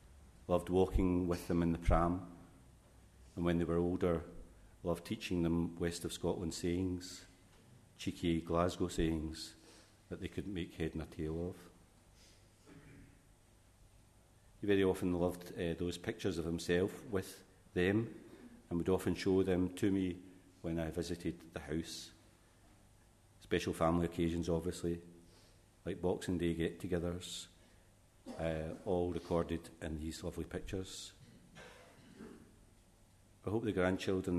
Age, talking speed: 40-59, 125 wpm